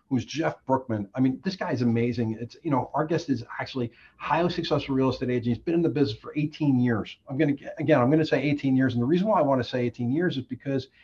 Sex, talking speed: male, 265 wpm